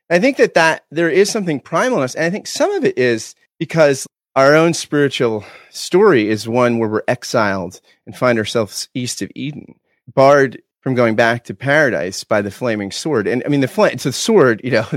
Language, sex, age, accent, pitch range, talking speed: English, male, 30-49, American, 120-165 Hz, 210 wpm